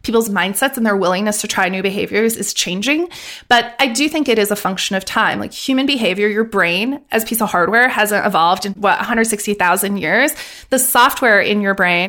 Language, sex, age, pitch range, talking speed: English, female, 20-39, 195-245 Hz, 210 wpm